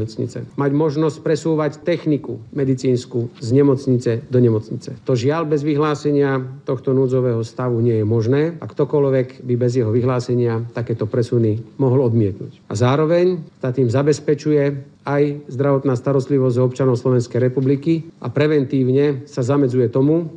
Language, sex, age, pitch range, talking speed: Slovak, male, 50-69, 120-140 Hz, 135 wpm